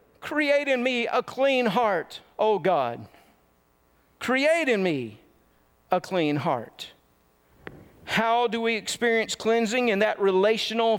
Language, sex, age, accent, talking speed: English, male, 50-69, American, 120 wpm